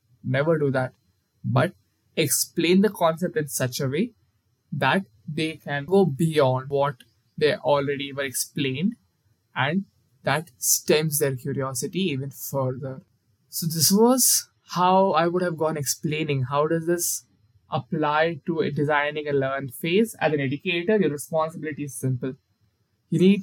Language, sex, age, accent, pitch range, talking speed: English, male, 20-39, Indian, 130-170 Hz, 140 wpm